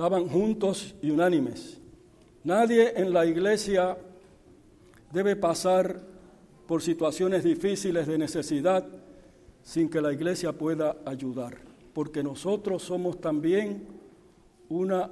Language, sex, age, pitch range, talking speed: Spanish, male, 60-79, 165-200 Hz, 105 wpm